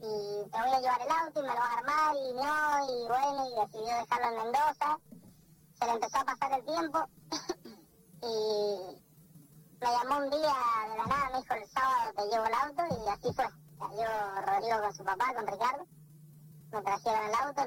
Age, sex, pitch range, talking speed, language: 20-39, male, 195-260 Hz, 205 wpm, Spanish